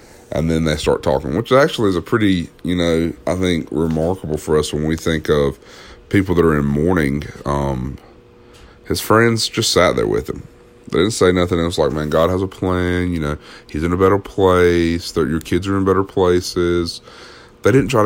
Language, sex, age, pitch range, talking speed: English, male, 30-49, 80-105 Hz, 205 wpm